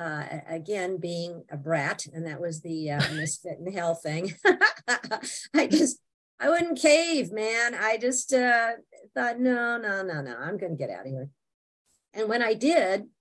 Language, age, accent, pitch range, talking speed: English, 50-69, American, 165-235 Hz, 175 wpm